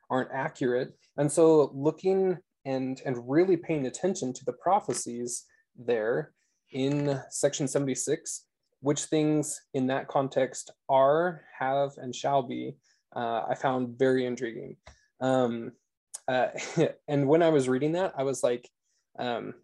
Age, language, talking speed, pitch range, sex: 20-39, English, 135 wpm, 125-155 Hz, male